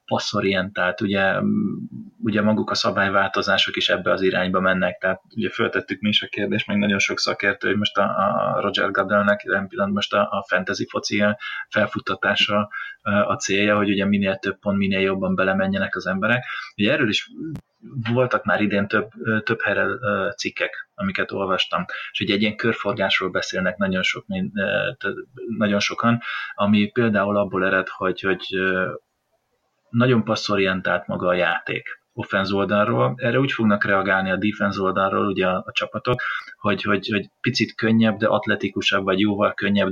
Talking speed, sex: 150 wpm, male